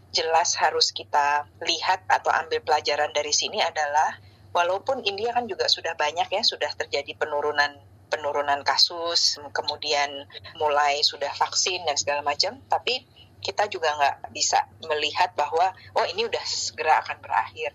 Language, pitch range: Indonesian, 150-185 Hz